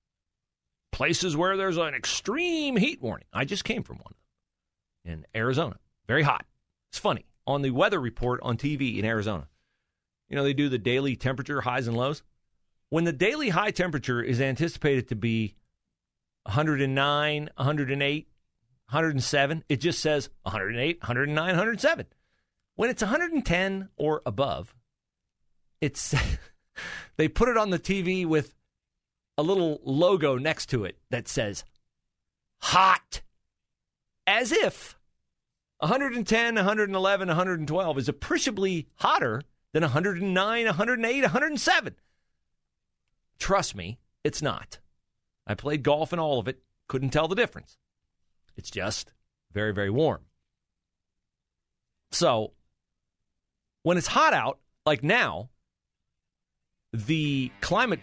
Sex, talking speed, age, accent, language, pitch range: male, 120 wpm, 40-59, American, English, 120-180 Hz